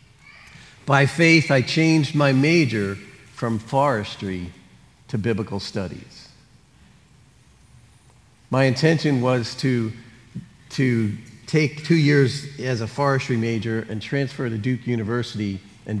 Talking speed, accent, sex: 110 wpm, American, male